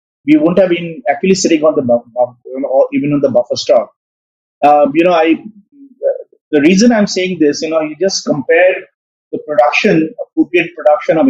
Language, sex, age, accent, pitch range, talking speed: English, male, 30-49, Indian, 150-245 Hz, 195 wpm